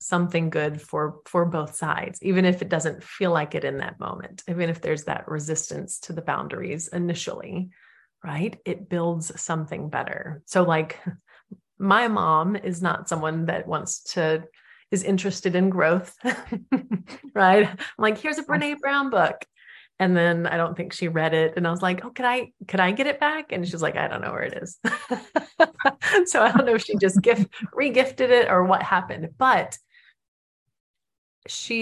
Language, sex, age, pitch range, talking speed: English, female, 30-49, 175-210 Hz, 180 wpm